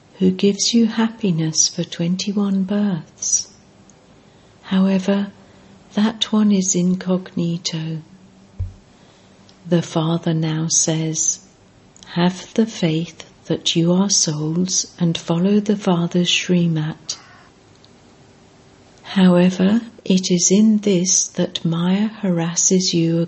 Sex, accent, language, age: female, British, English, 60-79